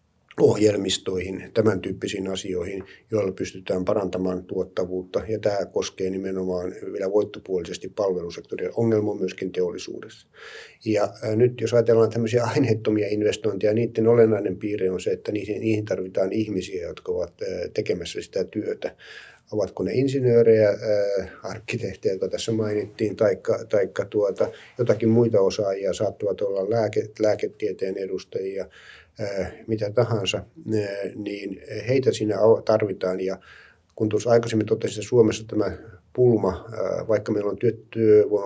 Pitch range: 100-145 Hz